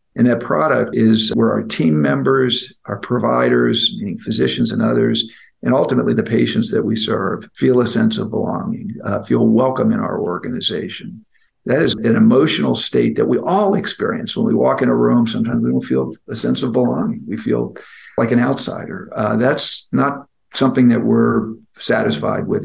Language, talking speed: English, 180 wpm